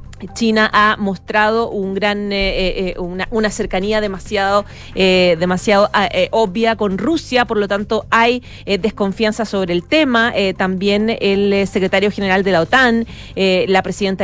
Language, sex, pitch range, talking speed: Spanish, female, 185-230 Hz, 155 wpm